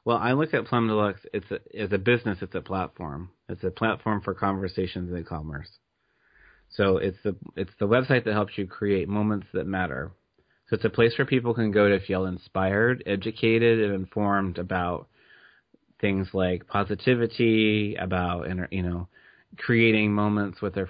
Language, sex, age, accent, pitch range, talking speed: English, male, 30-49, American, 95-105 Hz, 170 wpm